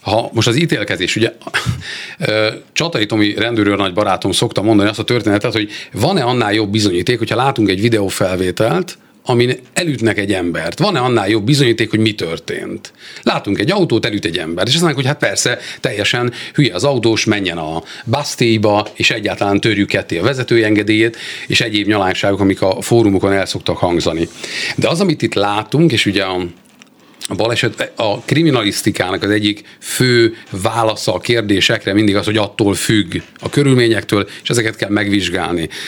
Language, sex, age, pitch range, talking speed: Hungarian, male, 40-59, 100-120 Hz, 160 wpm